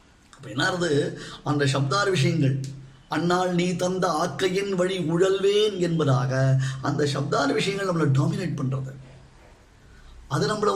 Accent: native